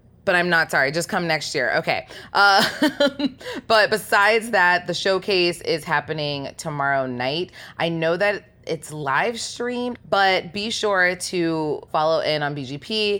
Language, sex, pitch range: English, female, 145-190 Hz